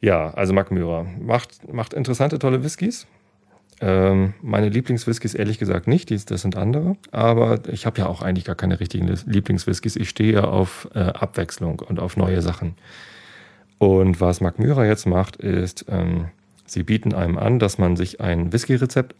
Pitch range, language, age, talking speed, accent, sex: 90-110 Hz, German, 40-59, 170 wpm, German, male